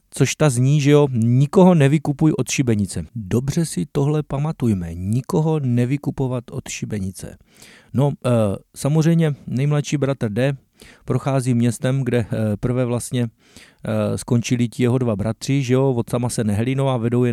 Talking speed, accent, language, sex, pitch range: 140 wpm, native, Czech, male, 115-135 Hz